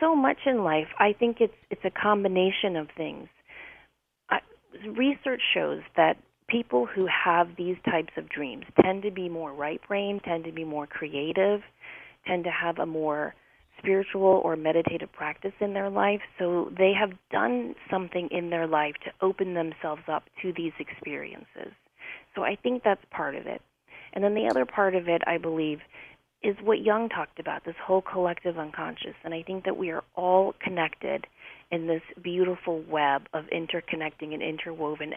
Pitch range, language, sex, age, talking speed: 160-195 Hz, English, female, 30-49, 175 wpm